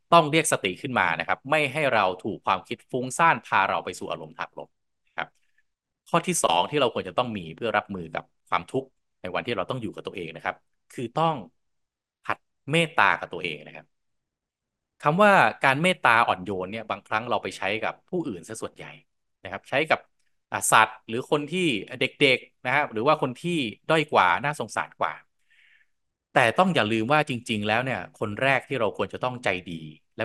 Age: 20-39